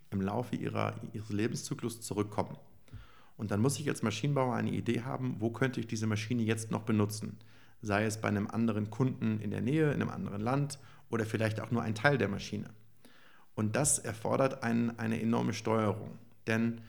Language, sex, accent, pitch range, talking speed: English, male, German, 105-125 Hz, 180 wpm